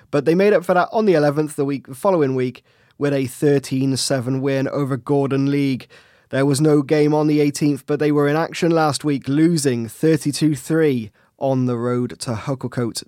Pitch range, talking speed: 125-160 Hz, 195 wpm